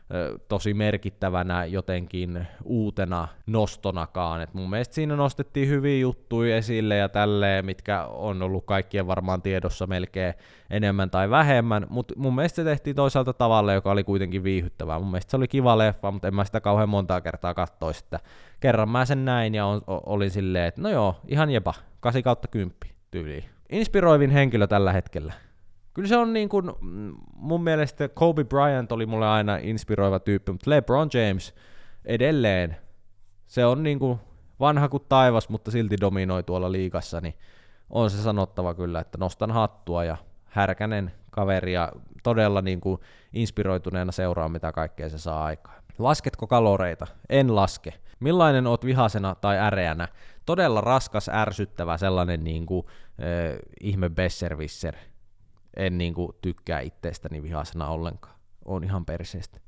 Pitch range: 90-115 Hz